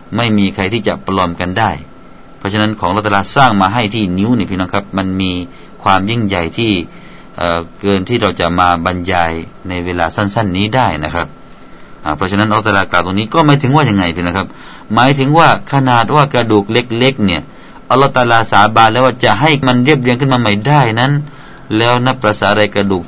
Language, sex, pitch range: Thai, male, 95-125 Hz